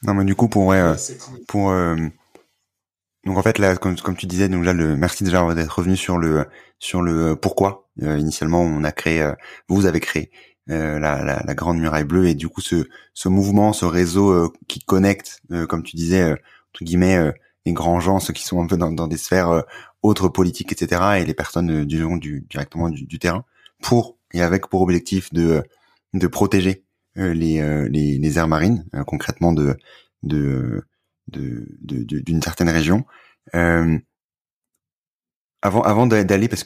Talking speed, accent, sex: 185 wpm, French, male